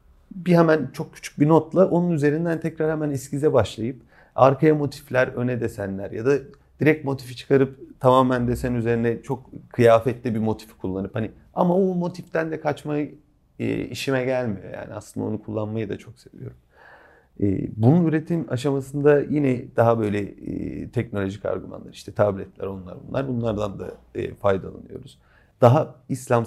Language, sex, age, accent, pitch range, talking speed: Turkish, male, 40-59, native, 105-135 Hz, 140 wpm